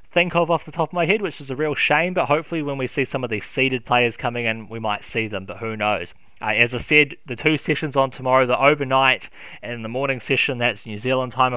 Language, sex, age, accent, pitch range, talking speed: English, male, 20-39, Australian, 115-145 Hz, 265 wpm